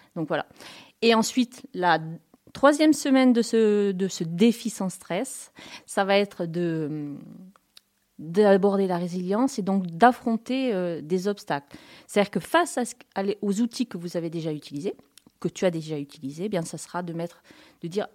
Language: French